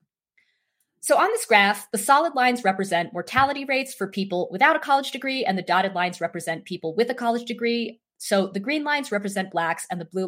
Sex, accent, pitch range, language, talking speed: female, American, 170-245 Hz, English, 205 wpm